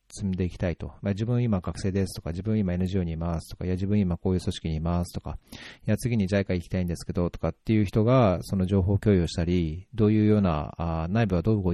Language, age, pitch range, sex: Japanese, 40-59, 85-110 Hz, male